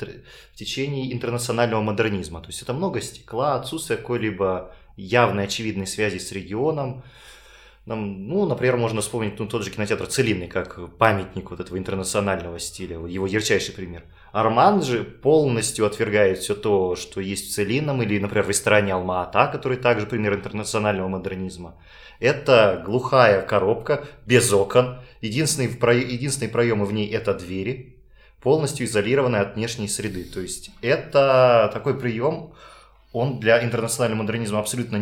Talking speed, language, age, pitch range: 140 wpm, Russian, 20-39, 100-120 Hz